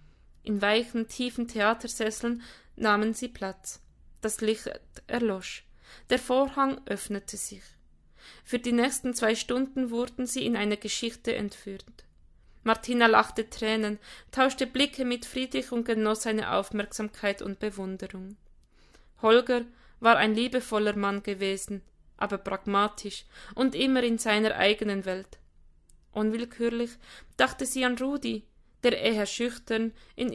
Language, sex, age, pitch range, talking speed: German, female, 20-39, 200-245 Hz, 120 wpm